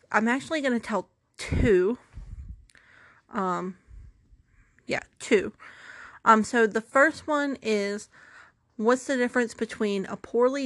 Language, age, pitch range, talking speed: English, 40-59, 185-225 Hz, 120 wpm